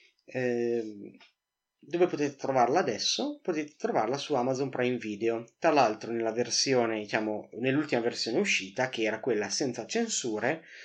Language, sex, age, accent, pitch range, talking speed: Italian, male, 30-49, native, 110-130 Hz, 125 wpm